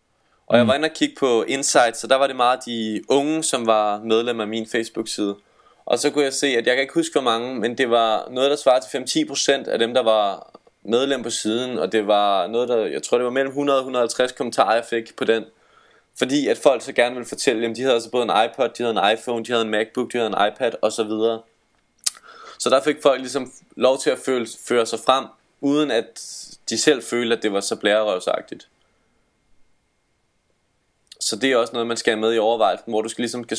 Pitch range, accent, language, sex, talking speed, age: 110-130 Hz, native, Danish, male, 230 wpm, 20-39